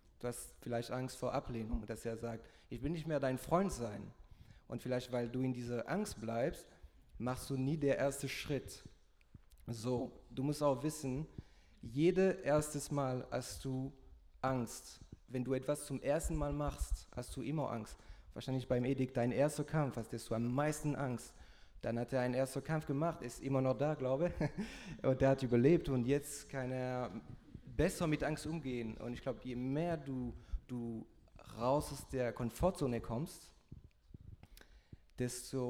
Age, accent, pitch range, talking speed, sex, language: 30-49, German, 120-140 Hz, 170 wpm, male, German